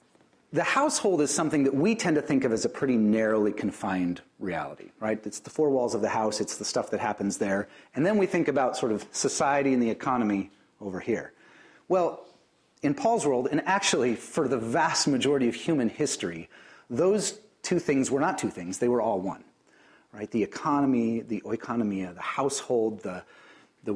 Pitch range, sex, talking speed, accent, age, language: 110-150 Hz, male, 190 wpm, American, 40-59, English